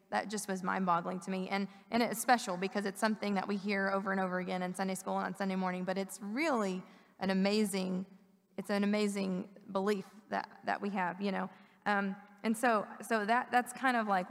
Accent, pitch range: American, 190-215 Hz